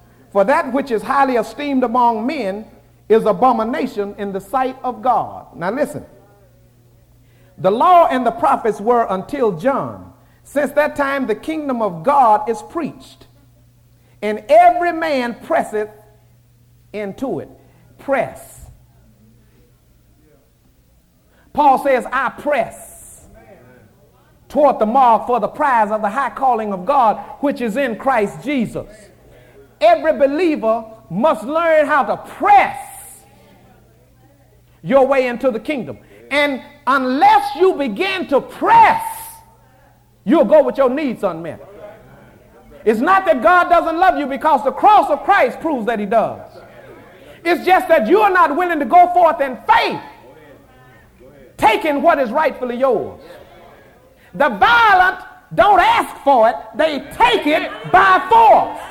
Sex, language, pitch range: male, English, 220-330 Hz